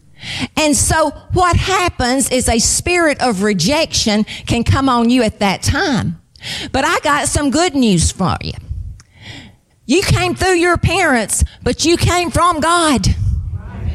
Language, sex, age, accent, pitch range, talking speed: English, female, 40-59, American, 295-365 Hz, 145 wpm